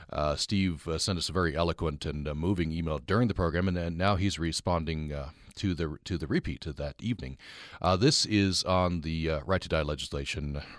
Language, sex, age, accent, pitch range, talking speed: English, male, 40-59, American, 85-110 Hz, 205 wpm